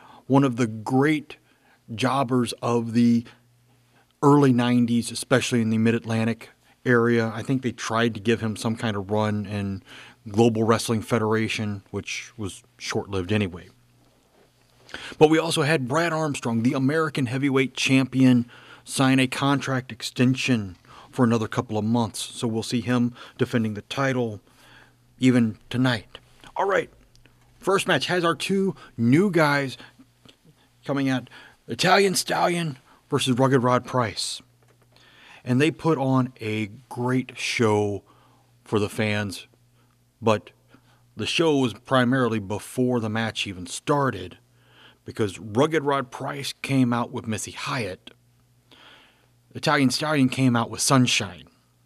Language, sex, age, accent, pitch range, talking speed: English, male, 30-49, American, 115-135 Hz, 130 wpm